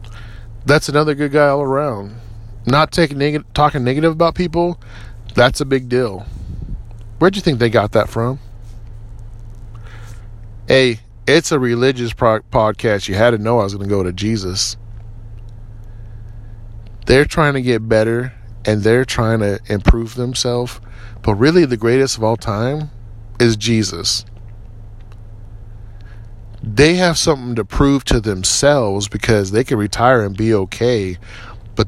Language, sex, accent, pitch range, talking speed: English, male, American, 110-150 Hz, 140 wpm